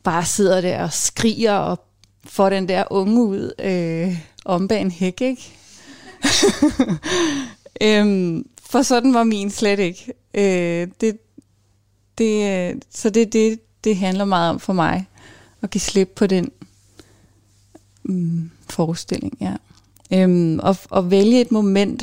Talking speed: 135 wpm